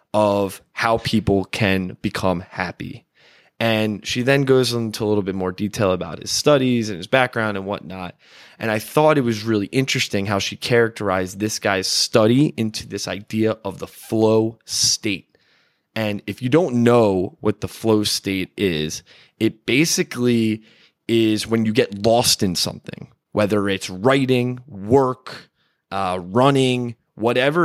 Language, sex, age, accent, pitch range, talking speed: English, male, 20-39, American, 100-125 Hz, 150 wpm